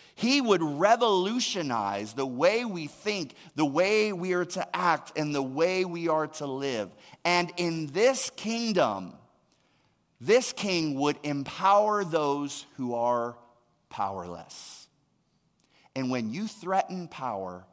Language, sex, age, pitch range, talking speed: English, male, 30-49, 125-180 Hz, 125 wpm